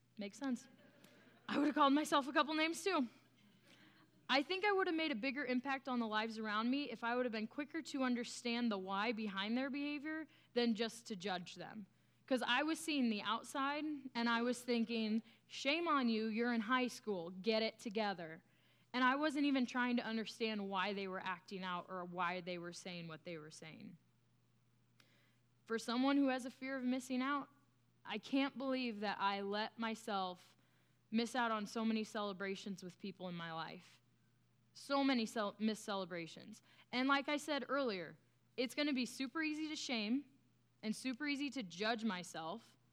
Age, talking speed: 20-39, 190 wpm